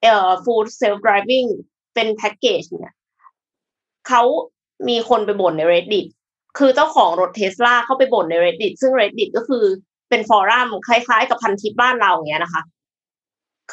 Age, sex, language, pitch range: 20-39, female, Thai, 185-255 Hz